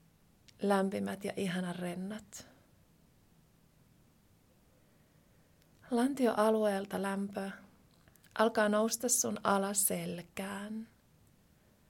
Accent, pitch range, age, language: native, 195-220 Hz, 30-49, Finnish